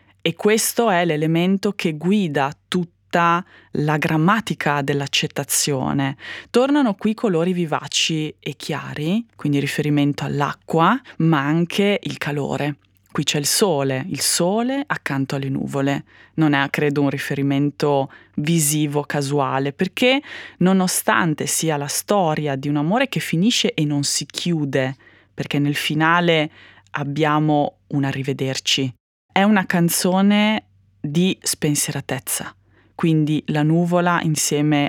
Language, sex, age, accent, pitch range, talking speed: Italian, female, 20-39, native, 145-175 Hz, 115 wpm